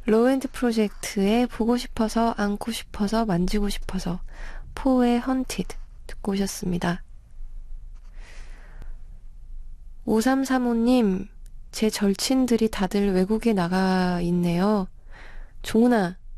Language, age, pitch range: Korean, 20-39, 180-225 Hz